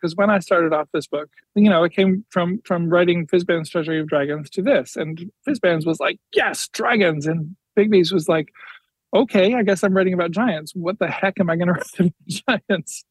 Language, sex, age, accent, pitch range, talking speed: English, male, 40-59, American, 150-180 Hz, 215 wpm